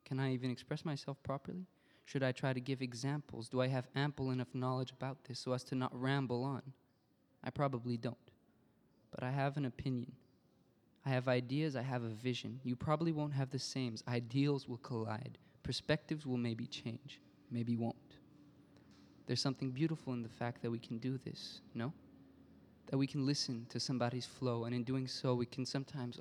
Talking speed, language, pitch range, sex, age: 190 wpm, French, 120-135 Hz, male, 20-39